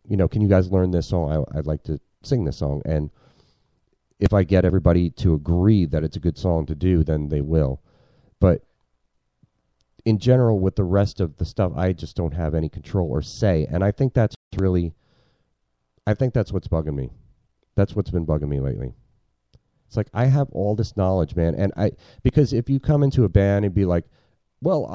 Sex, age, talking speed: male, 40-59, 210 wpm